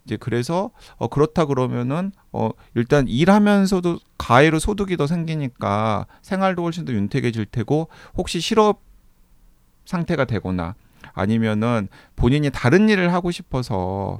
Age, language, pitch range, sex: 40-59, Korean, 105-160 Hz, male